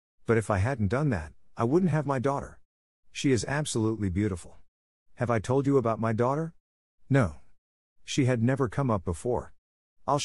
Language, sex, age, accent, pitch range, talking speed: English, male, 50-69, American, 85-120 Hz, 175 wpm